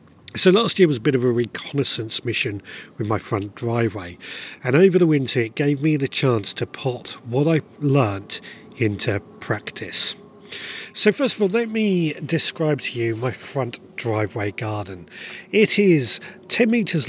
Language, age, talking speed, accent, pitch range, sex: English, 30-49, 165 wpm, British, 115-160 Hz, male